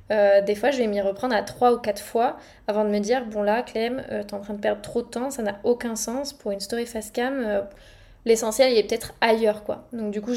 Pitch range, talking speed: 215-250 Hz, 265 wpm